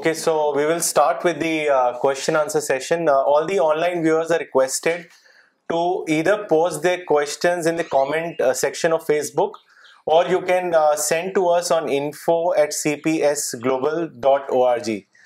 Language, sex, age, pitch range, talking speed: Urdu, male, 30-49, 145-185 Hz, 160 wpm